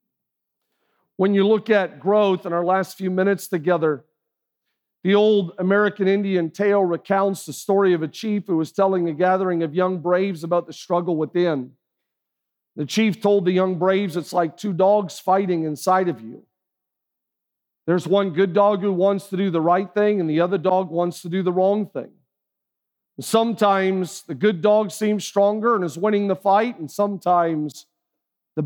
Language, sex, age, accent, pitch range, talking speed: English, male, 50-69, American, 180-210 Hz, 175 wpm